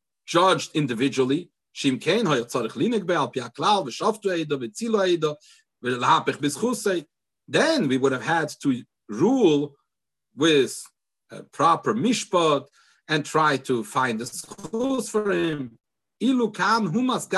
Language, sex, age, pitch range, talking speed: English, male, 50-69, 155-220 Hz, 65 wpm